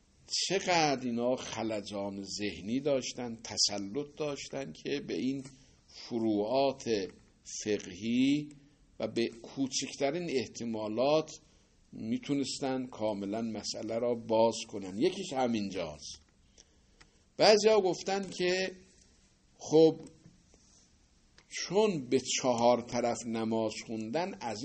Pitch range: 110-165 Hz